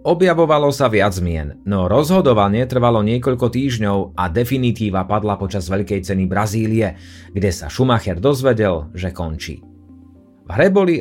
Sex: male